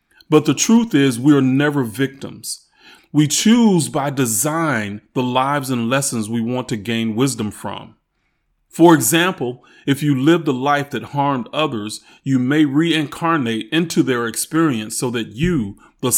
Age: 30-49